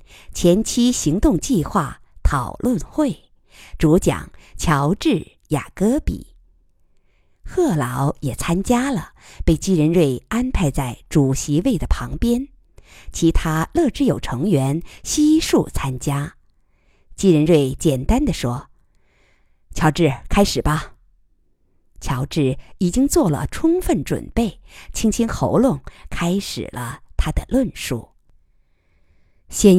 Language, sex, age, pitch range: Chinese, female, 50-69, 130-195 Hz